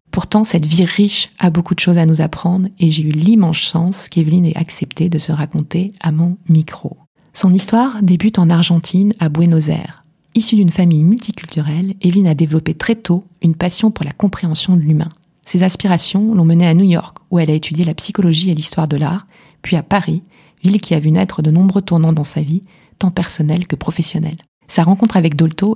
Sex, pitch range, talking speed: female, 160-185 Hz, 205 wpm